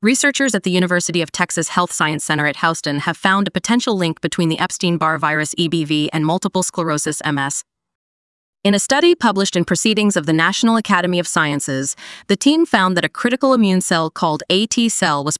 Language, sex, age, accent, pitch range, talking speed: English, female, 30-49, American, 155-205 Hz, 190 wpm